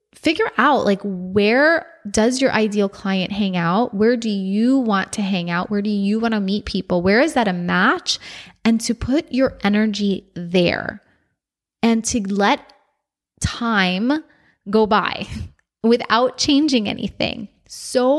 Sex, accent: female, American